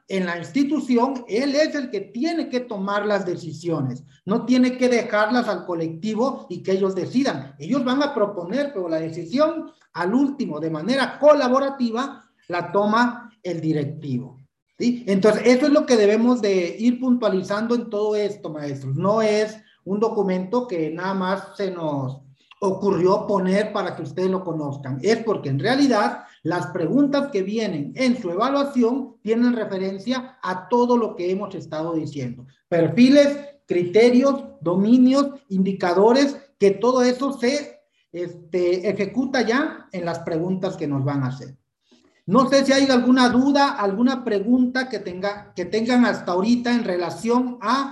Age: 40-59